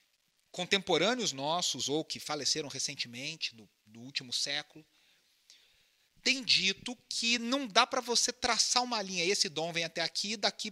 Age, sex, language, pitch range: 40-59, male, Portuguese, 160-215 Hz